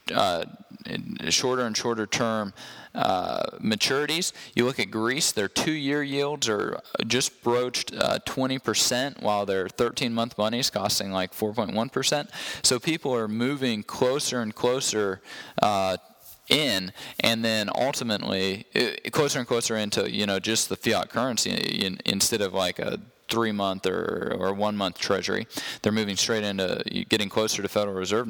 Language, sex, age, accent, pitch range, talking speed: English, male, 20-39, American, 105-120 Hz, 150 wpm